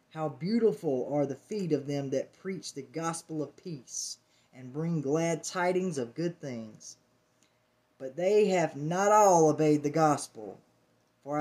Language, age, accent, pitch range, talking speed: English, 20-39, American, 150-210 Hz, 155 wpm